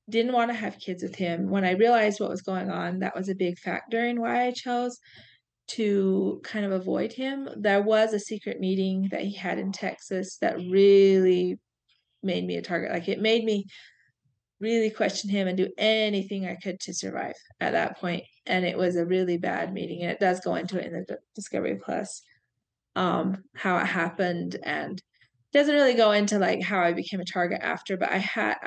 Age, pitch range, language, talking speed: 20-39, 175-210 Hz, English, 205 wpm